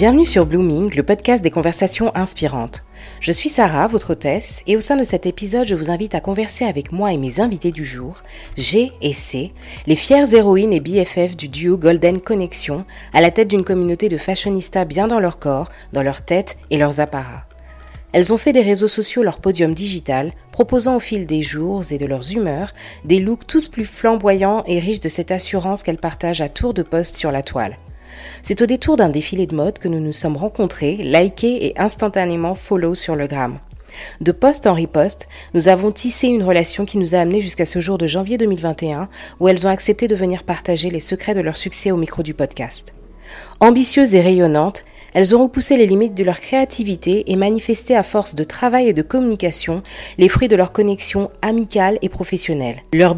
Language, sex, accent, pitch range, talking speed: French, female, French, 165-215 Hz, 205 wpm